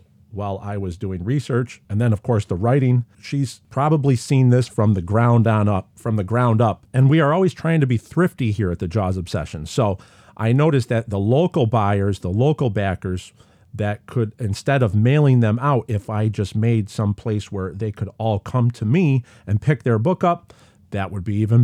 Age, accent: 40-59, American